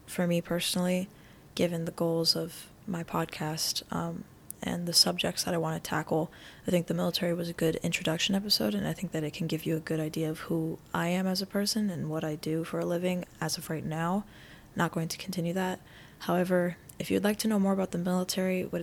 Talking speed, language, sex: 230 wpm, English, female